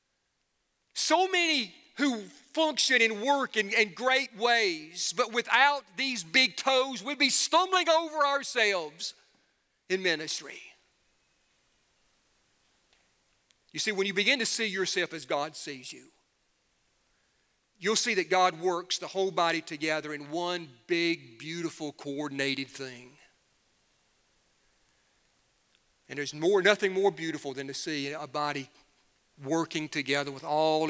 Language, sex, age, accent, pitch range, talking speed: English, male, 40-59, American, 140-210 Hz, 125 wpm